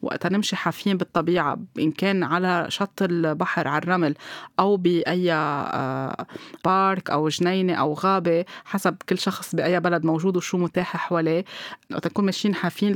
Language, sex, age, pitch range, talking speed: Arabic, female, 20-39, 170-195 Hz, 145 wpm